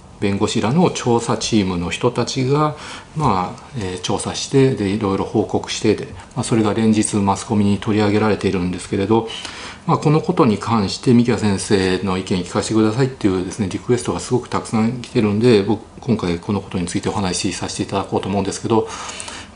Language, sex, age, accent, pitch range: Japanese, male, 40-59, native, 95-120 Hz